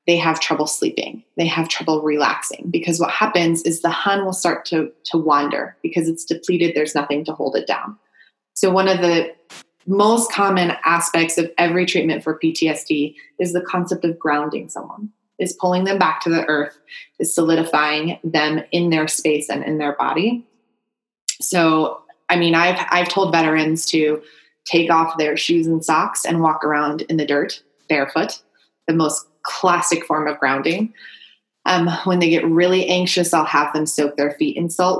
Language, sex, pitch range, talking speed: English, female, 155-180 Hz, 180 wpm